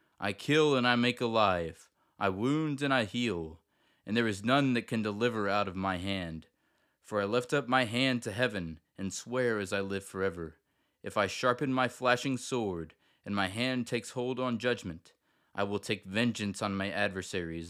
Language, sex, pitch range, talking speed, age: English, male, 95-125 Hz, 190 wpm, 20-39